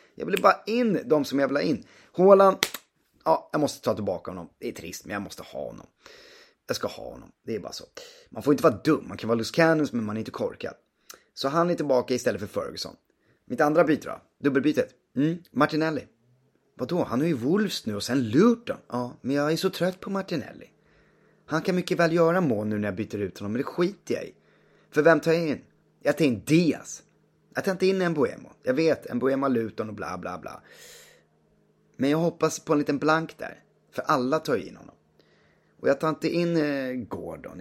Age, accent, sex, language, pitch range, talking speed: 30-49, native, male, Swedish, 125-165 Hz, 220 wpm